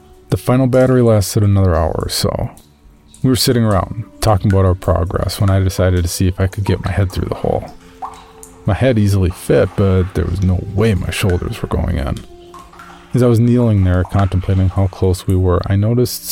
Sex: male